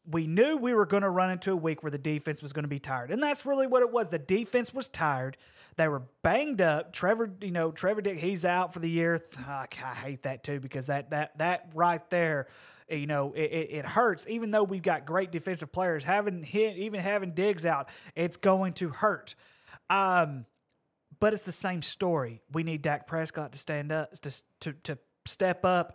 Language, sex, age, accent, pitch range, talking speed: English, male, 30-49, American, 150-190 Hz, 215 wpm